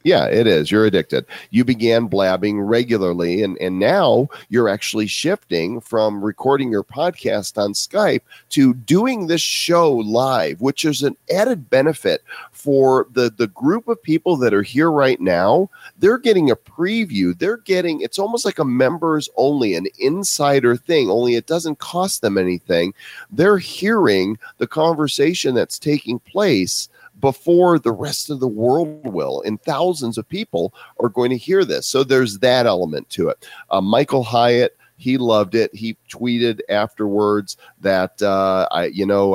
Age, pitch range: 40-59, 100-140 Hz